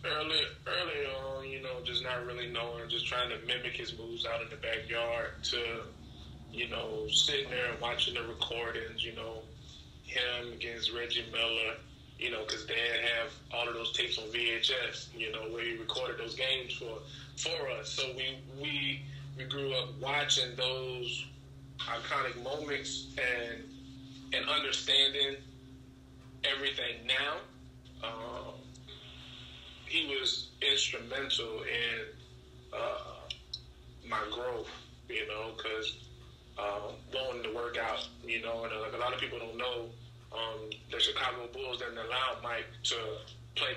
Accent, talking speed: American, 145 wpm